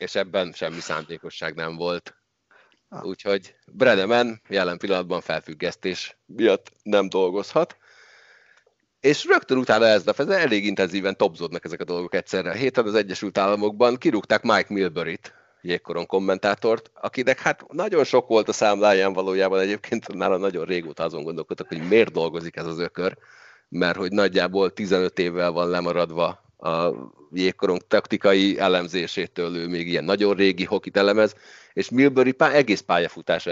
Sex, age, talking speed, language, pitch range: male, 30-49, 140 wpm, Hungarian, 90-110 Hz